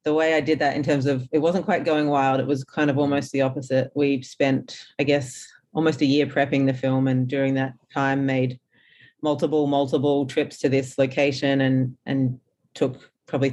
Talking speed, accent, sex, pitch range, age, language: 200 wpm, Australian, female, 130-145 Hz, 30-49, English